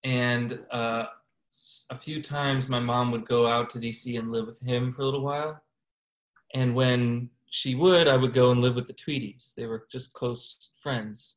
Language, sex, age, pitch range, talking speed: English, male, 20-39, 115-130 Hz, 195 wpm